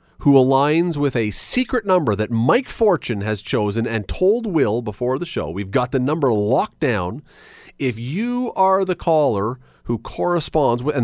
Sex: male